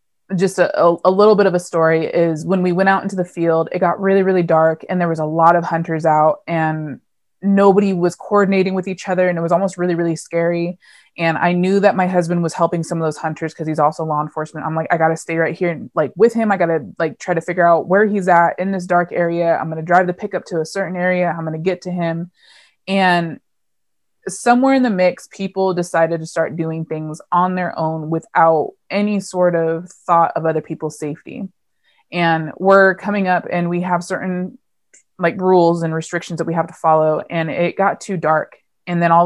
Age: 20-39